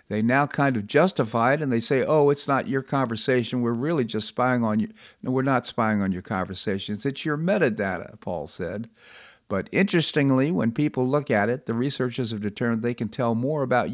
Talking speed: 205 wpm